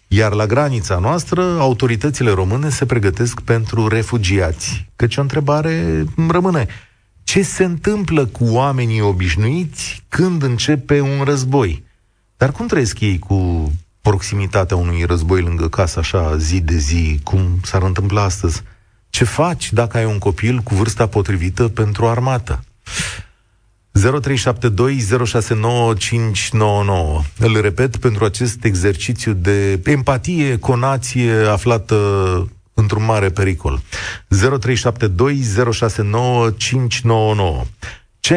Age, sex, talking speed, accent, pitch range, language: 30-49, male, 110 wpm, native, 95-125 Hz, Romanian